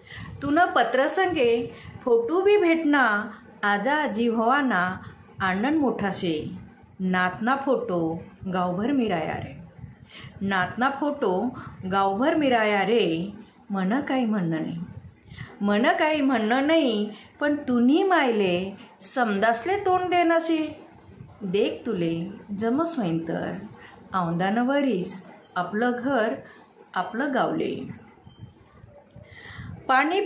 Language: Marathi